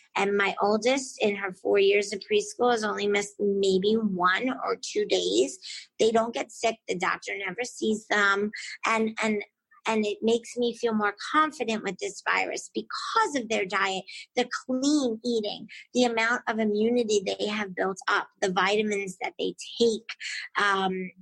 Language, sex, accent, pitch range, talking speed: English, female, American, 200-235 Hz, 165 wpm